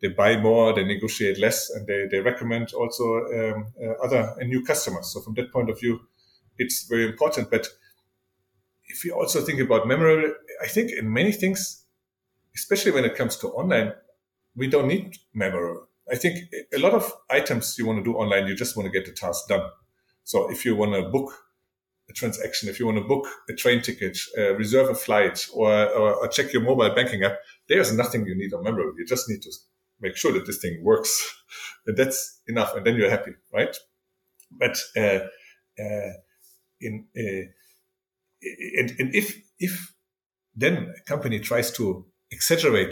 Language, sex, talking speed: English, male, 190 wpm